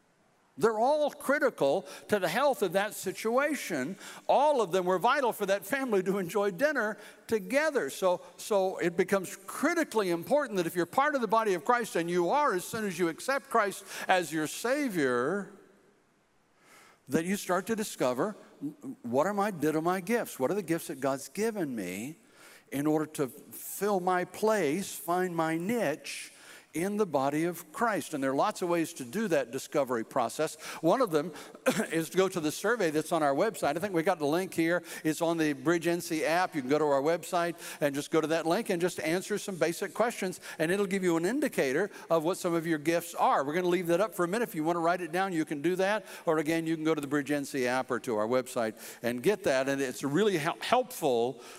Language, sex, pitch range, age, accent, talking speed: English, male, 155-205 Hz, 60-79, American, 220 wpm